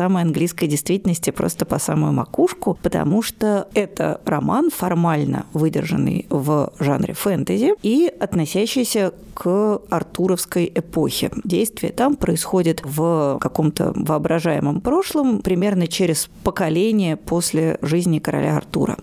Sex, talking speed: female, 110 wpm